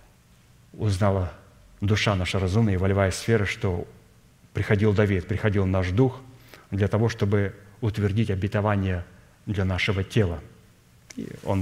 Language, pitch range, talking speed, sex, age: Russian, 95-115 Hz, 115 wpm, male, 30-49